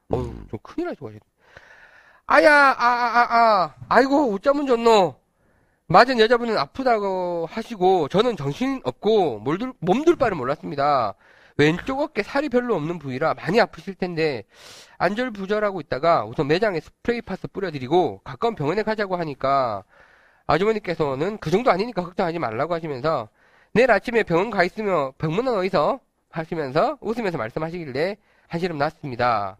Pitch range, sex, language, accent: 140-215 Hz, male, Korean, native